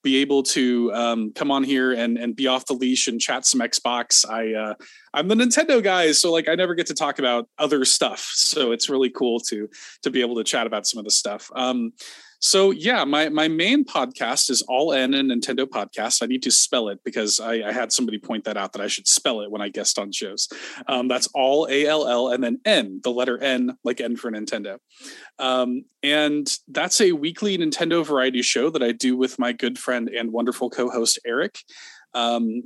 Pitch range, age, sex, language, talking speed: 120-160 Hz, 30-49, male, English, 220 wpm